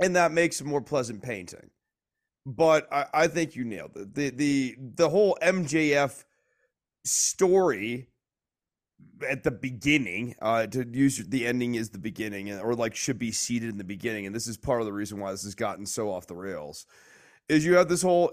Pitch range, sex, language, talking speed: 110-150 Hz, male, English, 195 wpm